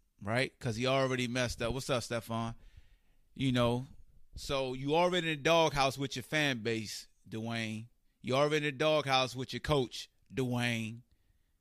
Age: 30-49